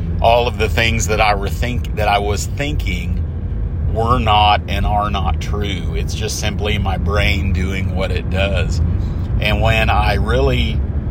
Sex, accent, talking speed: male, American, 155 wpm